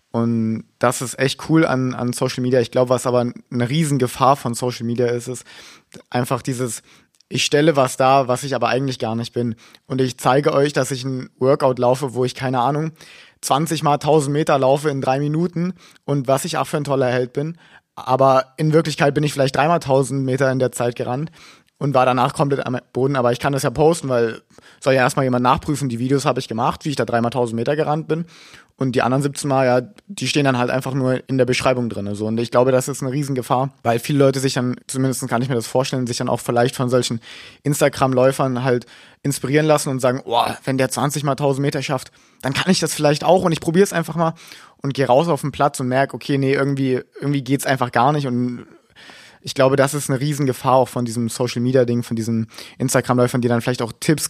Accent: German